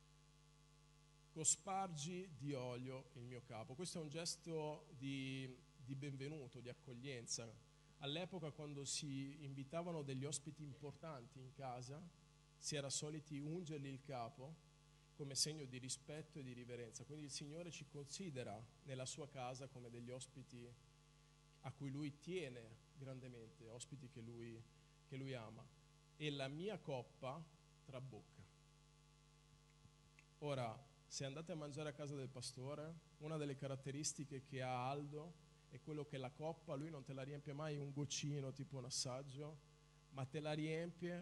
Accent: native